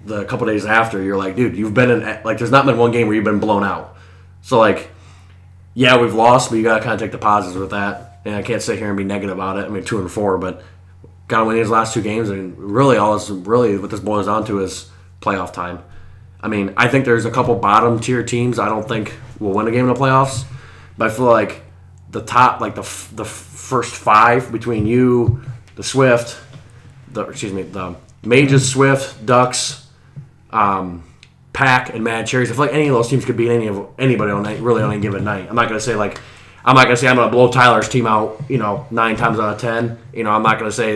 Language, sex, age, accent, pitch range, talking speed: English, male, 20-39, American, 100-120 Hz, 245 wpm